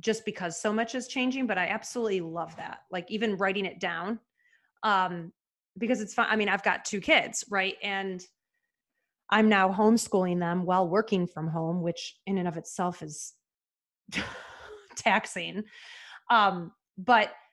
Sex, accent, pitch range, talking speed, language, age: female, American, 180-220 Hz, 155 wpm, English, 30-49